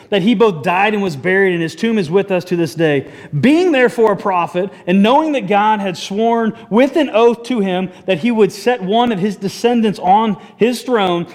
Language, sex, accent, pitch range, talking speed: English, male, American, 170-235 Hz, 220 wpm